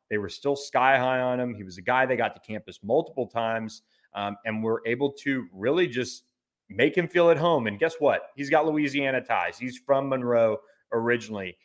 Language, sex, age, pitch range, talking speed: English, male, 30-49, 115-145 Hz, 205 wpm